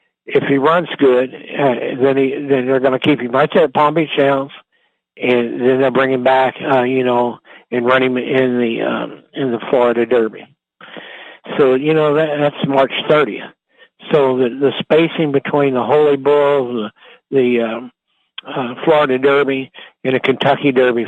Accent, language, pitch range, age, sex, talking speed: American, English, 120-145 Hz, 60-79, male, 175 wpm